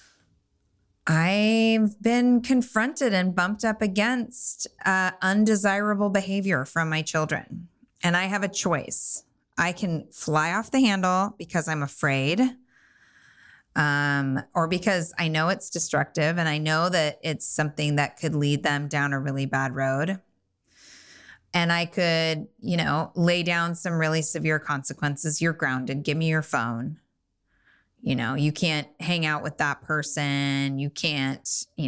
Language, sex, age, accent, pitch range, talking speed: English, female, 20-39, American, 145-190 Hz, 145 wpm